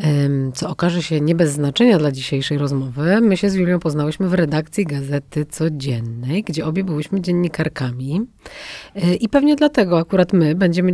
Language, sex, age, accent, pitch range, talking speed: Polish, female, 30-49, native, 150-190 Hz, 155 wpm